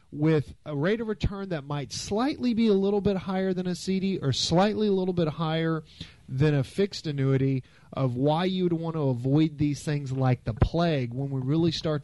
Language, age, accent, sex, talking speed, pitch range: English, 40-59, American, male, 205 wpm, 130-155 Hz